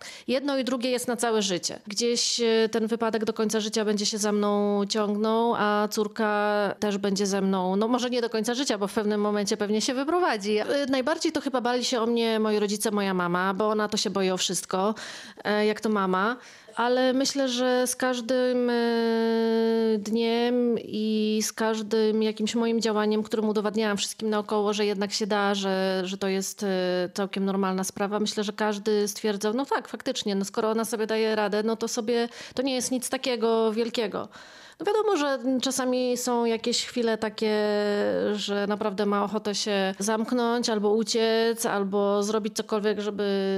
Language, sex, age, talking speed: Polish, female, 30-49, 175 wpm